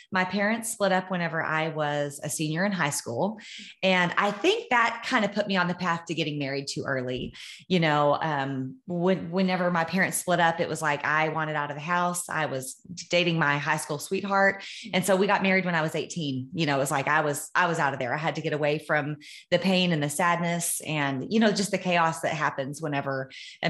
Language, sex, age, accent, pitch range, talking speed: English, female, 30-49, American, 150-190 Hz, 235 wpm